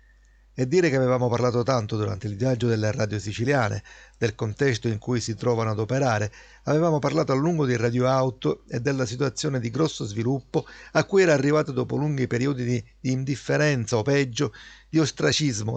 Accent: native